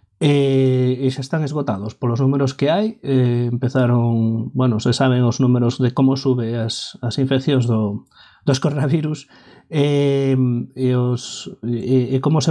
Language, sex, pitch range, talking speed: English, male, 125-155 Hz, 165 wpm